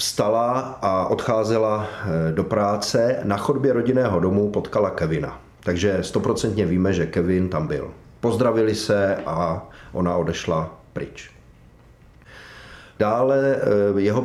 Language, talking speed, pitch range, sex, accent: Czech, 110 wpm, 90-110 Hz, male, native